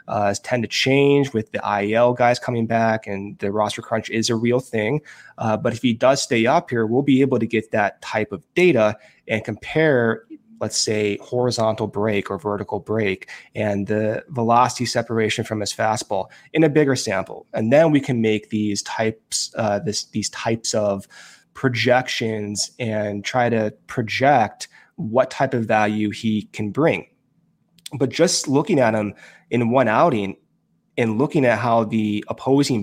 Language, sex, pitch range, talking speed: English, male, 110-135 Hz, 170 wpm